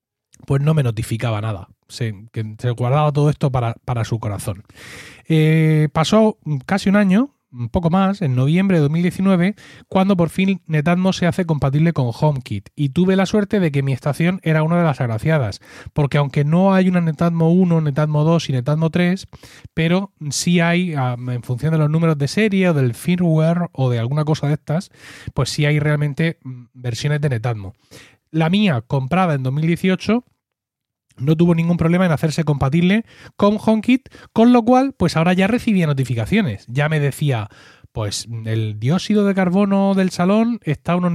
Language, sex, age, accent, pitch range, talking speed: Spanish, male, 30-49, Spanish, 130-180 Hz, 175 wpm